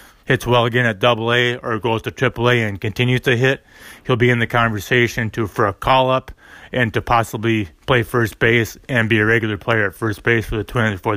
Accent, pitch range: American, 110-130 Hz